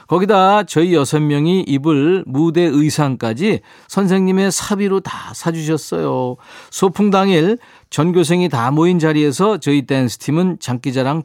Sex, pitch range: male, 140-185 Hz